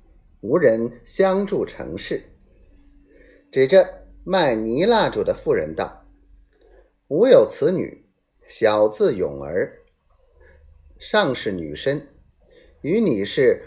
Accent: native